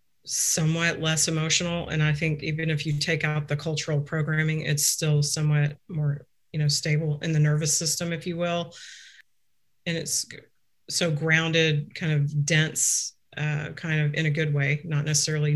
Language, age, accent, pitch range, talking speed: English, 40-59, American, 150-170 Hz, 170 wpm